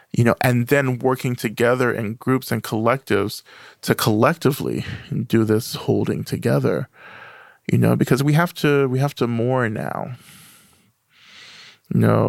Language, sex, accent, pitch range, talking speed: English, male, American, 110-135 Hz, 135 wpm